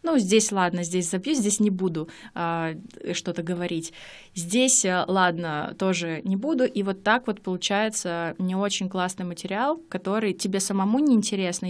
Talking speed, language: 145 wpm, Russian